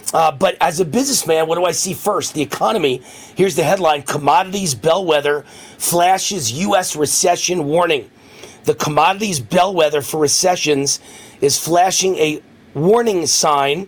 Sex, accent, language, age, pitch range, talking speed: male, American, English, 40-59, 155-205 Hz, 135 wpm